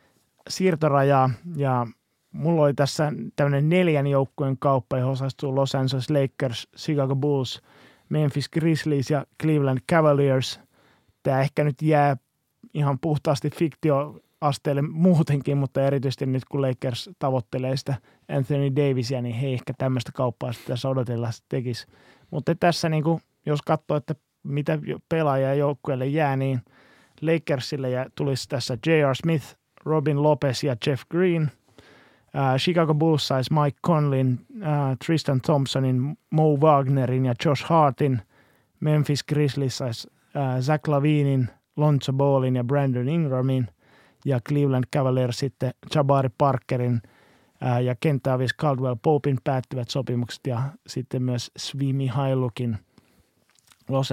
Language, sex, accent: Finnish, male, native